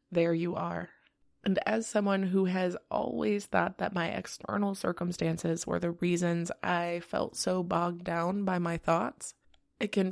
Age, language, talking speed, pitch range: 20-39, English, 160 wpm, 170-195 Hz